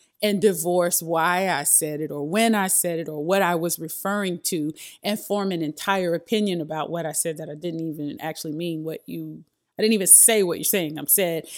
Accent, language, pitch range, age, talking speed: American, English, 165-205 Hz, 30-49, 225 wpm